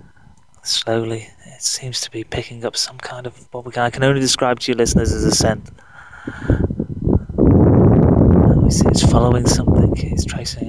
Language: English